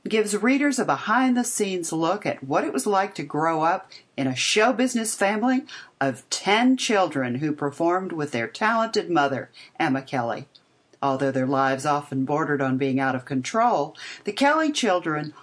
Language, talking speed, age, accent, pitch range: English, 165 wpm, 50-69, American, 135-195 Hz